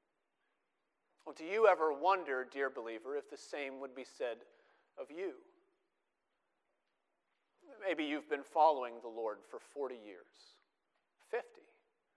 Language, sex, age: English, male, 40-59